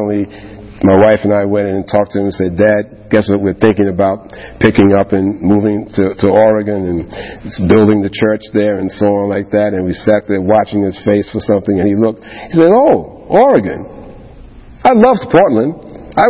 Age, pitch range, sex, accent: 50-69, 100-130 Hz, male, American